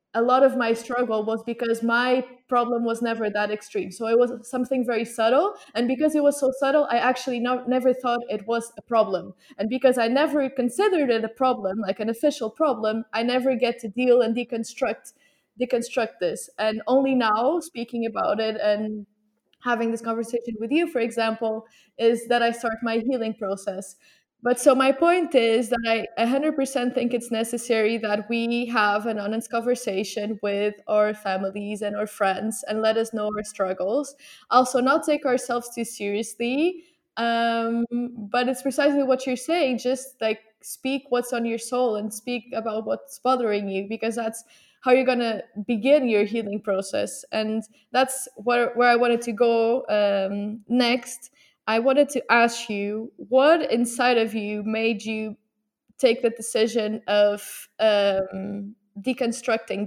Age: 20-39